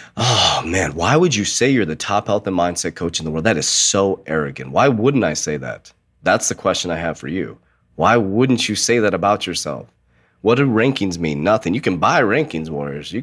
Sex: male